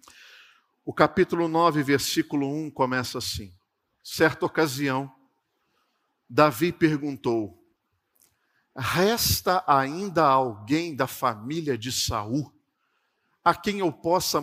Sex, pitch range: male, 130-165 Hz